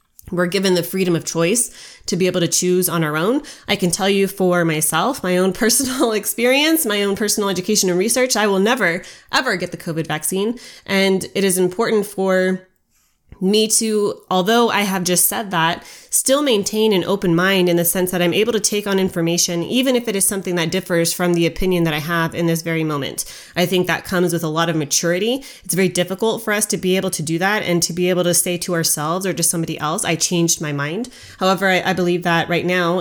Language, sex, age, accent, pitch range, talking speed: English, female, 20-39, American, 170-195 Hz, 230 wpm